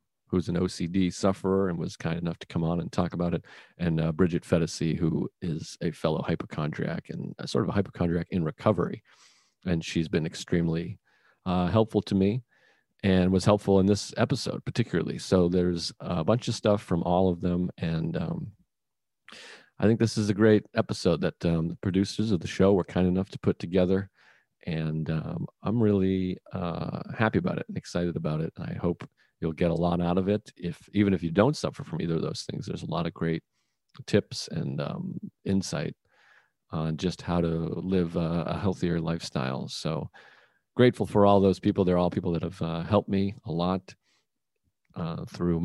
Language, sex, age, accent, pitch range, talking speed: English, male, 40-59, American, 85-100 Hz, 195 wpm